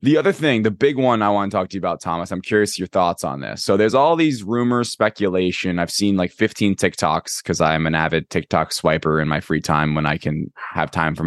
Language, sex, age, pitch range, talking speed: English, male, 20-39, 90-120 Hz, 250 wpm